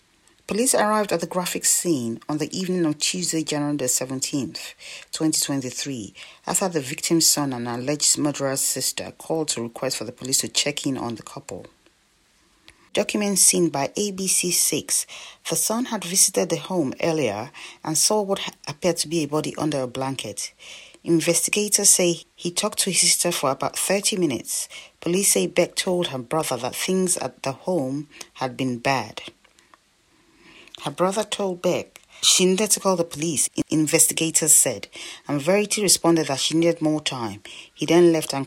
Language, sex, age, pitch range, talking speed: English, female, 30-49, 135-180 Hz, 165 wpm